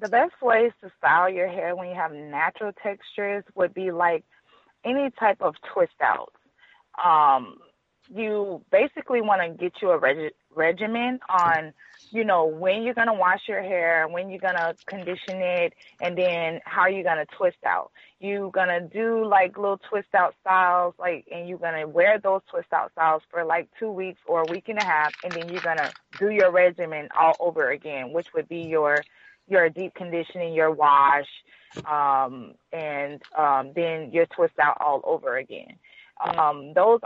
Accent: American